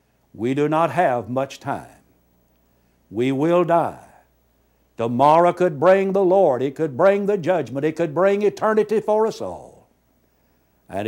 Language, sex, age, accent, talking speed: English, male, 60-79, American, 145 wpm